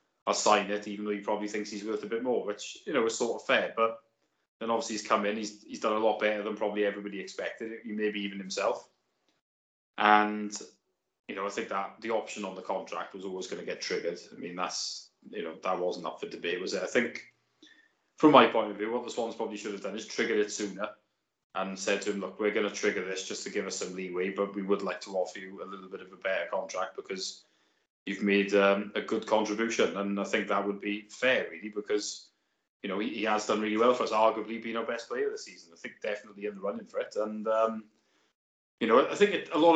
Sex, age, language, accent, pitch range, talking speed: male, 20-39, English, British, 100-115 Hz, 250 wpm